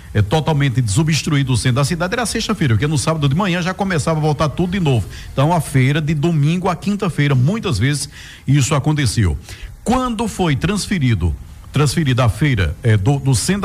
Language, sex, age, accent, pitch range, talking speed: Portuguese, male, 50-69, Brazilian, 130-185 Hz, 190 wpm